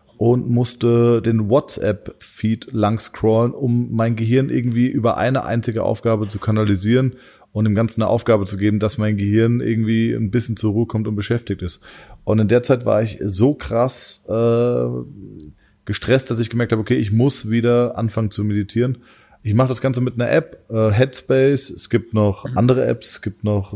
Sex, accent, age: male, German, 20-39